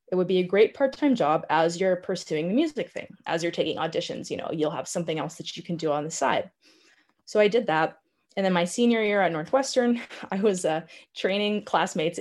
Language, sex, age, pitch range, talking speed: English, female, 20-39, 165-205 Hz, 225 wpm